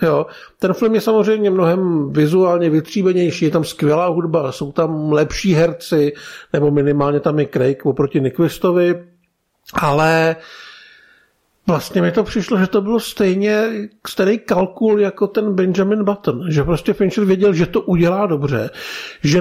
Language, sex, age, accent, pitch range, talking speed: Czech, male, 50-69, native, 165-210 Hz, 145 wpm